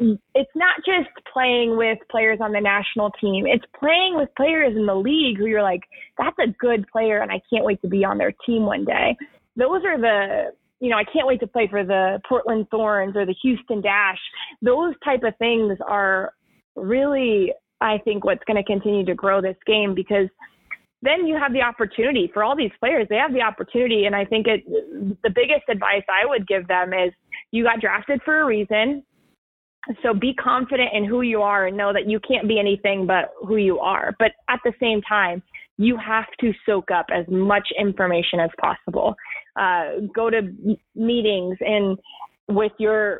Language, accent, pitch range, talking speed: English, American, 200-240 Hz, 195 wpm